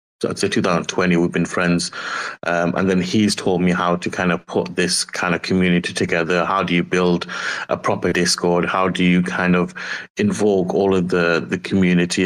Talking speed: 190 wpm